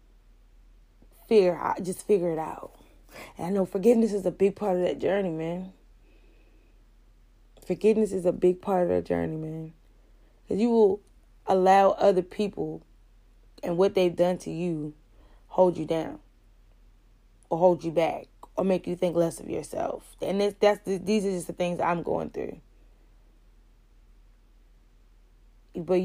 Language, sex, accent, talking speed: English, female, American, 150 wpm